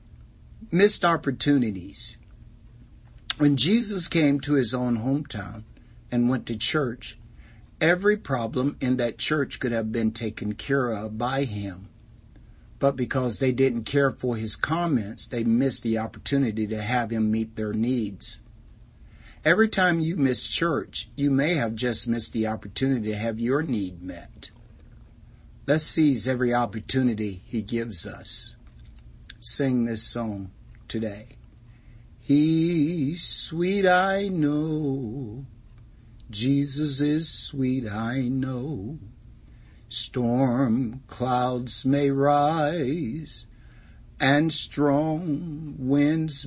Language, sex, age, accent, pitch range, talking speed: English, male, 60-79, American, 115-145 Hz, 115 wpm